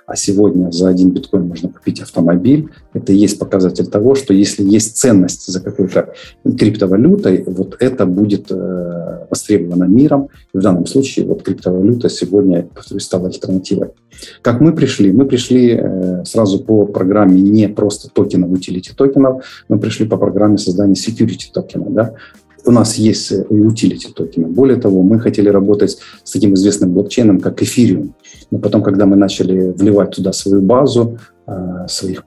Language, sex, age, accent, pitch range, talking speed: Russian, male, 40-59, native, 95-110 Hz, 150 wpm